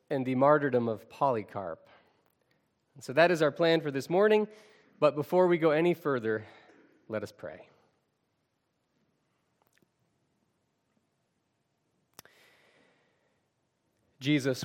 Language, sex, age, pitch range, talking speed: English, male, 30-49, 115-145 Hz, 95 wpm